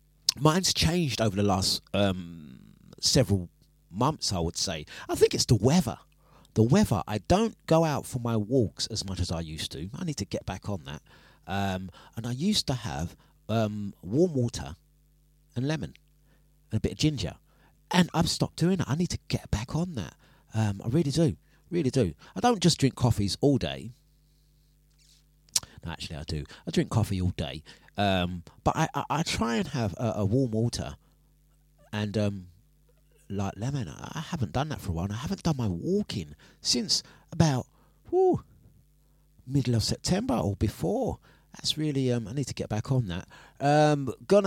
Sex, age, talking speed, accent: male, 30-49, 185 wpm, British